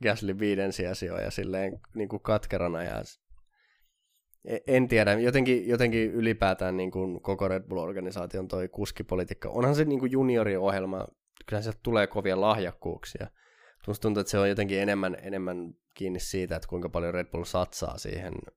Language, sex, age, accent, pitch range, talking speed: Finnish, male, 20-39, native, 95-105 Hz, 140 wpm